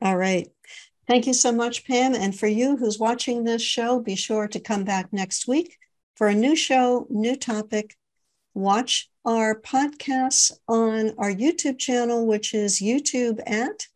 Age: 60-79